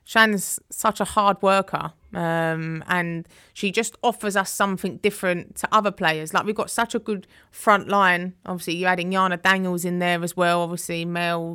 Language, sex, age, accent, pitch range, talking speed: English, female, 20-39, British, 170-195 Hz, 180 wpm